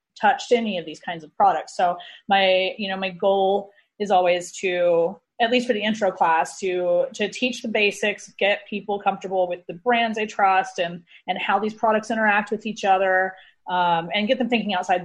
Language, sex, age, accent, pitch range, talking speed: English, female, 30-49, American, 175-220 Hz, 200 wpm